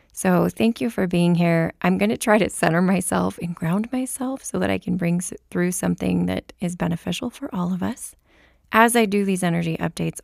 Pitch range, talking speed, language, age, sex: 160-195 Hz, 205 wpm, English, 20-39, female